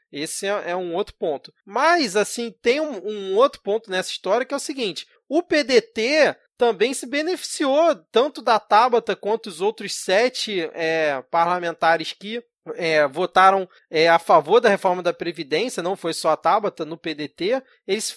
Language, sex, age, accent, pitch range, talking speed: Portuguese, male, 20-39, Brazilian, 170-235 Hz, 165 wpm